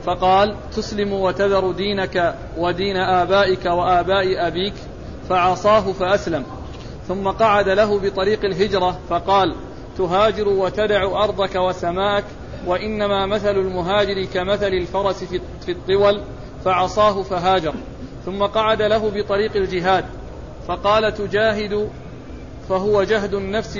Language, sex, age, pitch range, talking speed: Arabic, male, 40-59, 185-210 Hz, 100 wpm